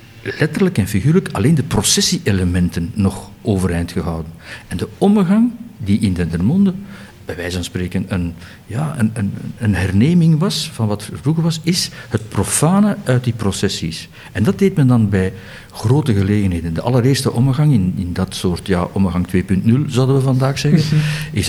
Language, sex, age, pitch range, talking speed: Dutch, male, 50-69, 95-130 Hz, 165 wpm